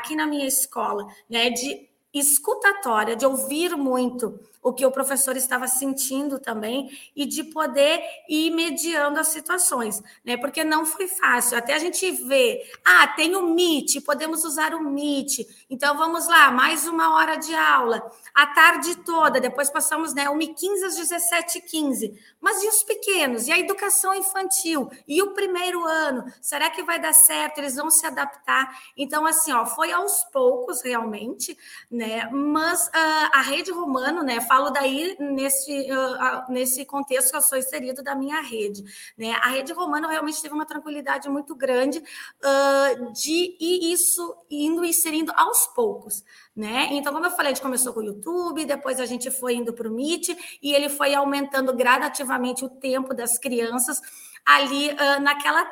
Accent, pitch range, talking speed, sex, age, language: Brazilian, 260-330 Hz, 170 wpm, female, 20-39, Portuguese